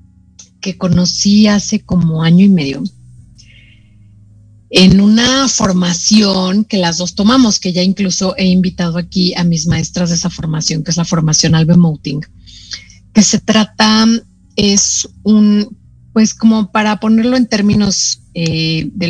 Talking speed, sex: 140 wpm, female